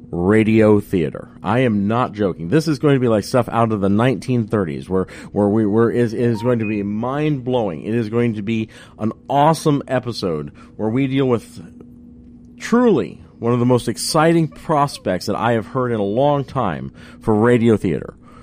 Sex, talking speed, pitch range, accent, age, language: male, 190 wpm, 100-135 Hz, American, 40-59, English